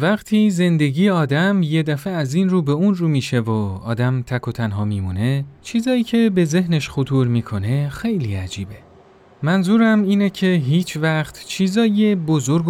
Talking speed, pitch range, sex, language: 155 wpm, 120-175 Hz, male, Persian